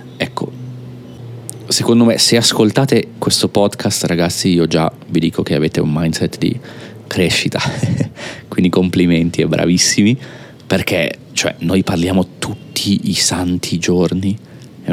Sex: male